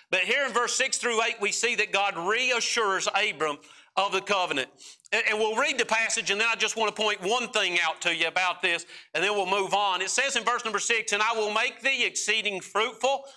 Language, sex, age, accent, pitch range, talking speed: English, male, 50-69, American, 190-235 Hz, 240 wpm